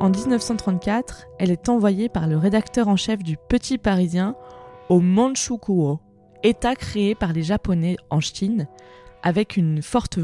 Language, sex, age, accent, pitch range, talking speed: French, female, 20-39, French, 175-225 Hz, 145 wpm